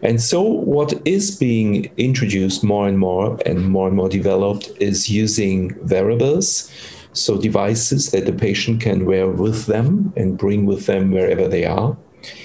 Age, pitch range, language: 50-69, 100-120 Hz, English